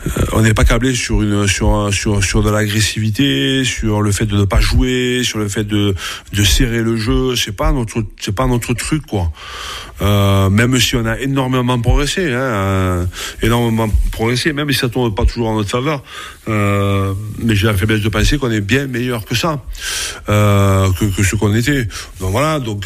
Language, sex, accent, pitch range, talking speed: French, male, French, 95-115 Hz, 200 wpm